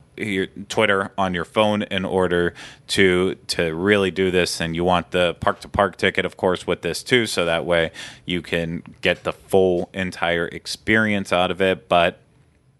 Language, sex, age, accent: English, male, 30-49, American